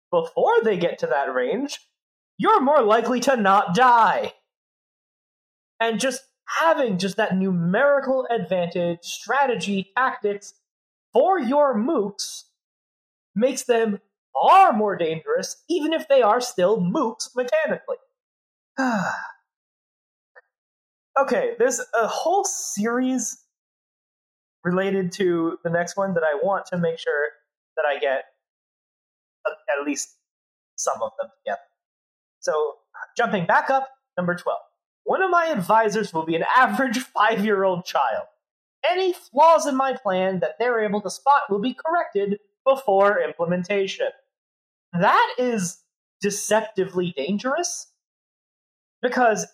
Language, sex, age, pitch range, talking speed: English, male, 20-39, 200-295 Hz, 120 wpm